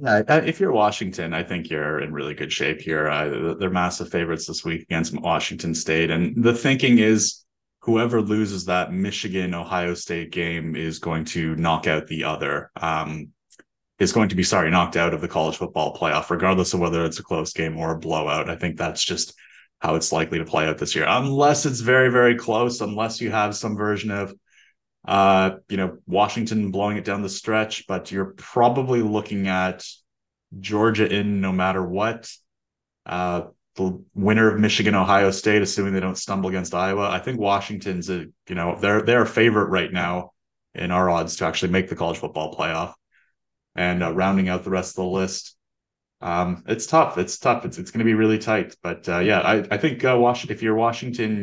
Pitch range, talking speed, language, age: 85-110 Hz, 200 wpm, English, 20-39